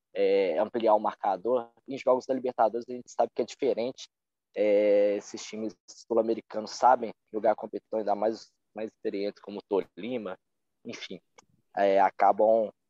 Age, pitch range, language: 20-39, 105-135 Hz, Portuguese